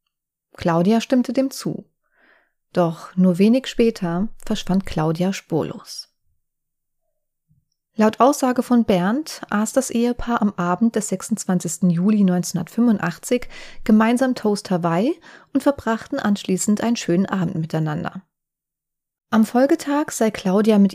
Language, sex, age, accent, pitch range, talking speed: German, female, 30-49, German, 180-235 Hz, 110 wpm